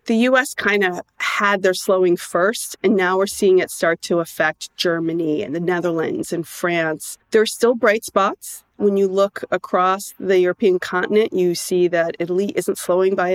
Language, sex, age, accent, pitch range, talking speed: English, female, 40-59, American, 180-230 Hz, 185 wpm